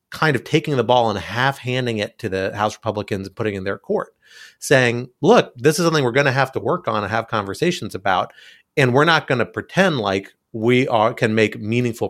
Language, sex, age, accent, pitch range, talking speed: English, male, 30-49, American, 100-135 Hz, 230 wpm